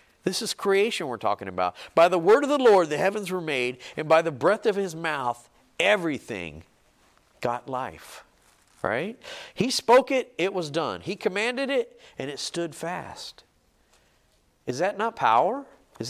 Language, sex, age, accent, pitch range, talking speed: English, male, 50-69, American, 135-215 Hz, 170 wpm